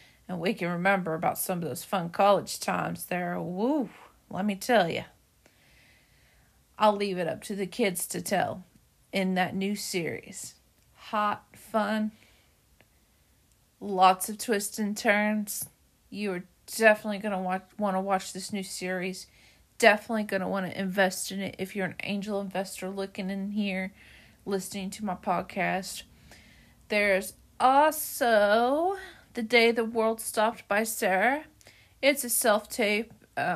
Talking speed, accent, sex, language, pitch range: 145 wpm, American, female, English, 185-220 Hz